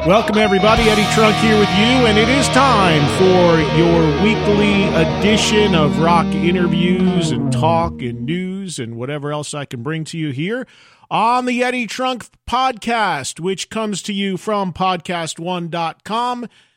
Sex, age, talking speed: male, 40-59, 150 wpm